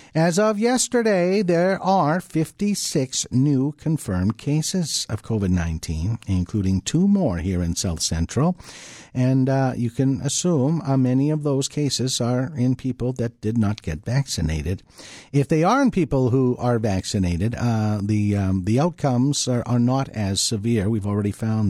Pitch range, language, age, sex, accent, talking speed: 100-150 Hz, English, 50-69, male, American, 160 wpm